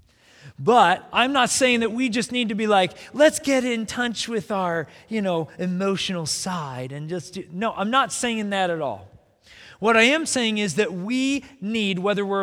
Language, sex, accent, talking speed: English, male, American, 195 wpm